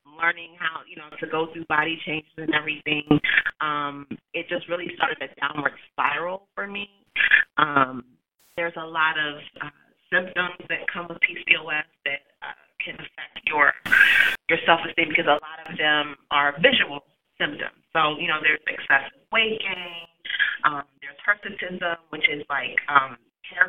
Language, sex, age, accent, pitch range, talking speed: English, female, 30-49, American, 150-180 Hz, 155 wpm